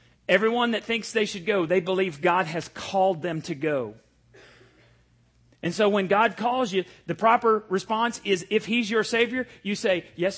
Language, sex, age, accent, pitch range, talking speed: English, male, 40-59, American, 130-210 Hz, 180 wpm